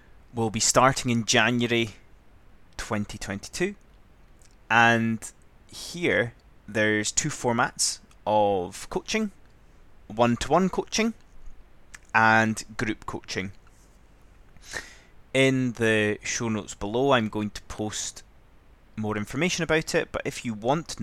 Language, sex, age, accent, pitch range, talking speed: English, male, 20-39, British, 95-125 Hz, 105 wpm